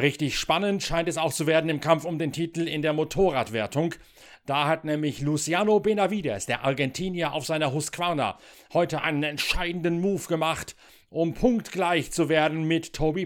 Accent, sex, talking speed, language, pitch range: German, male, 165 wpm, German, 140-175 Hz